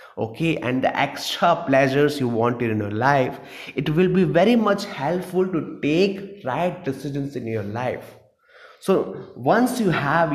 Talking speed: 155 wpm